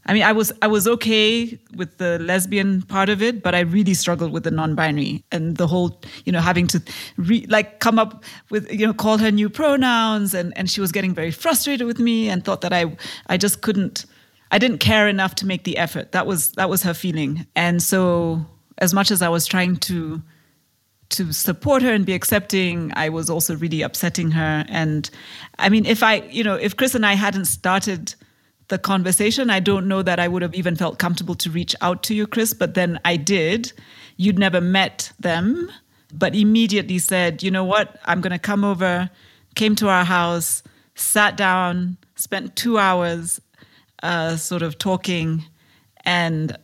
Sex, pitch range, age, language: female, 175-210 Hz, 30-49, English